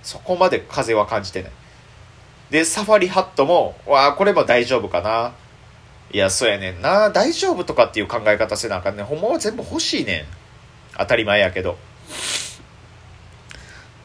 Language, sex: Japanese, male